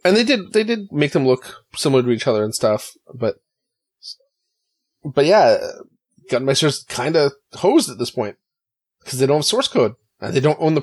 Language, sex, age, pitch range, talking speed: English, male, 30-49, 125-185 Hz, 195 wpm